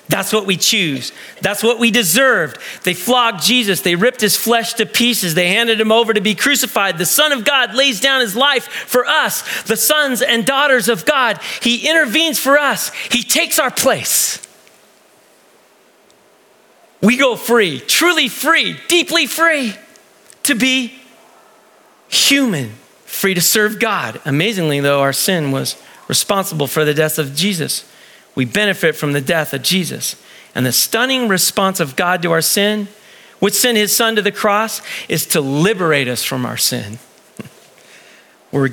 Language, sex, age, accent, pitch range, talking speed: English, male, 40-59, American, 160-240 Hz, 160 wpm